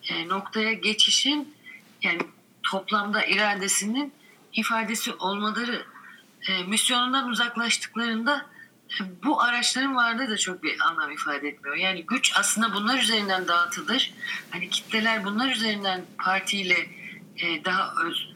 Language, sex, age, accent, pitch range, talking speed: Turkish, female, 30-49, native, 185-230 Hz, 115 wpm